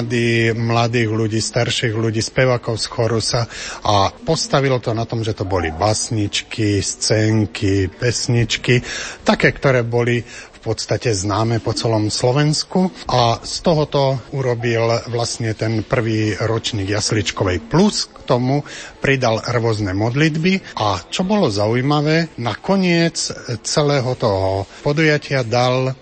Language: Slovak